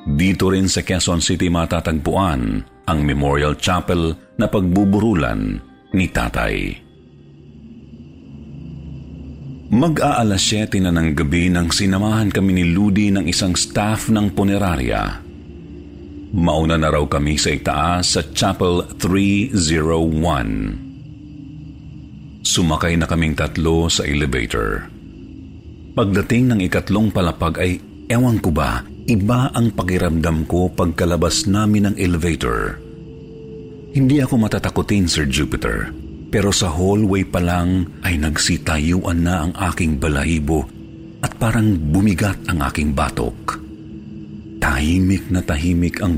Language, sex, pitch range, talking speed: Filipino, male, 80-100 Hz, 110 wpm